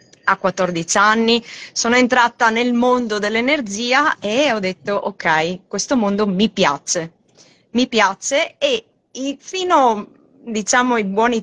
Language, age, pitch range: Italian, 20-39, 200-280 Hz